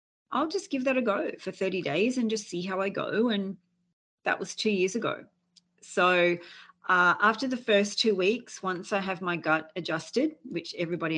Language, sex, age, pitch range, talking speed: Persian, female, 40-59, 155-190 Hz, 195 wpm